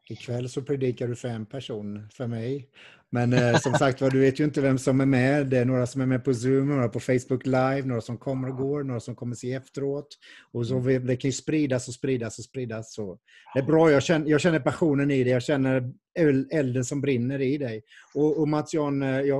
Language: Swedish